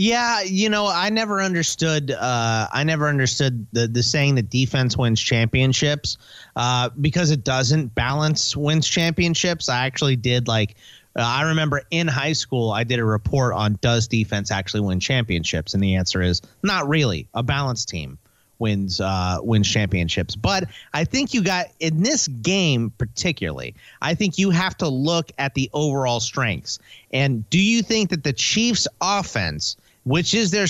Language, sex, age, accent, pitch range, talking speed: English, male, 30-49, American, 115-165 Hz, 180 wpm